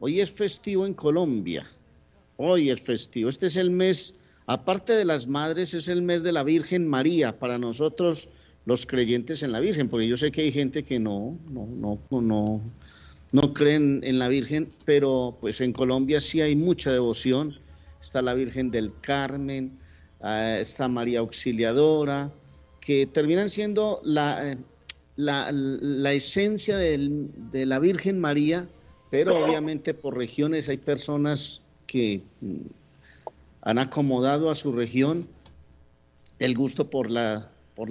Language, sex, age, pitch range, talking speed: Spanish, male, 50-69, 120-150 Hz, 145 wpm